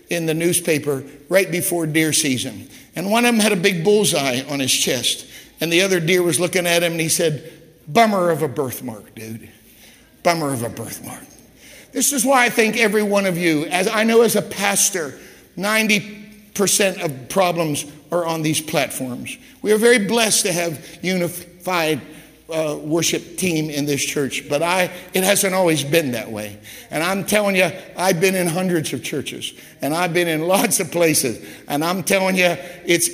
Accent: American